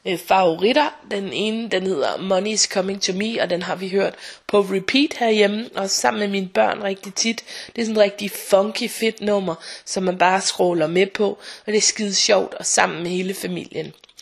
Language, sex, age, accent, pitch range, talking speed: Danish, female, 20-39, native, 185-220 Hz, 205 wpm